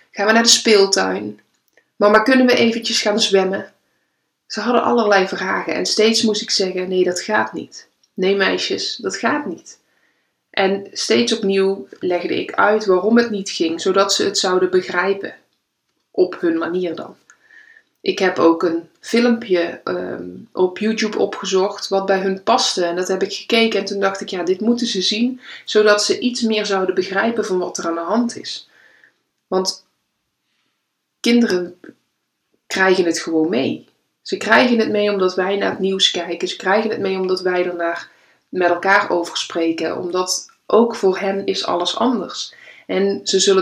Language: Dutch